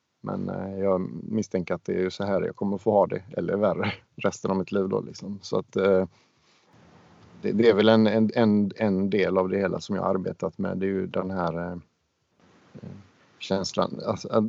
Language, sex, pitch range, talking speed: Swedish, male, 95-110 Hz, 185 wpm